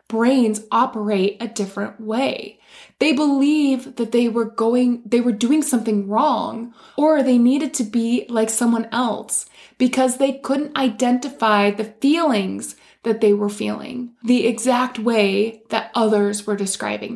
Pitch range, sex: 220-275 Hz, female